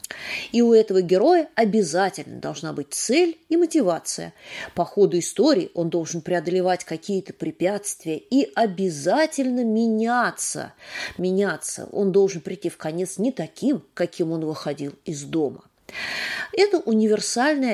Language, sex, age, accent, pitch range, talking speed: Russian, female, 30-49, native, 175-250 Hz, 120 wpm